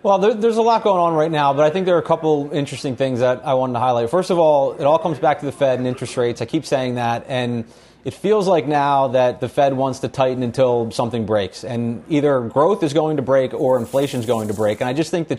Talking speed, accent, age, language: 275 wpm, American, 30-49, English